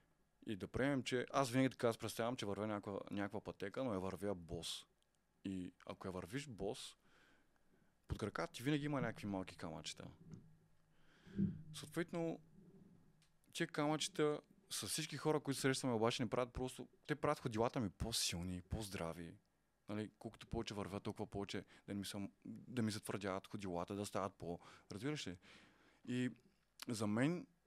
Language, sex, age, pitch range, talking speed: Bulgarian, male, 20-39, 95-130 Hz, 150 wpm